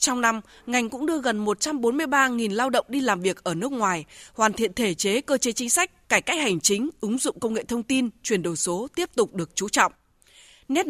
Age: 20-39